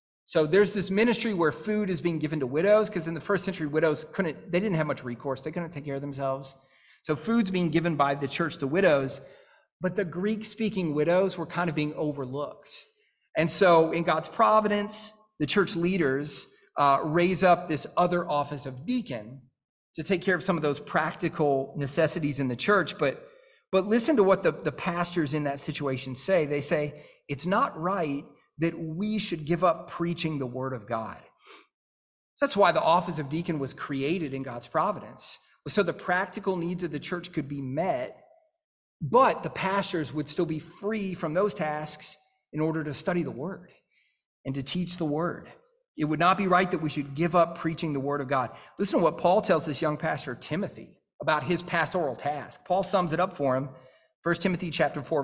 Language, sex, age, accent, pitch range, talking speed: English, male, 40-59, American, 145-185 Hz, 195 wpm